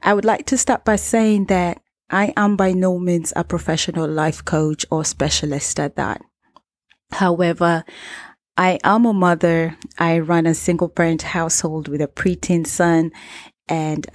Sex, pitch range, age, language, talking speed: female, 160-185 Hz, 30-49, English, 155 wpm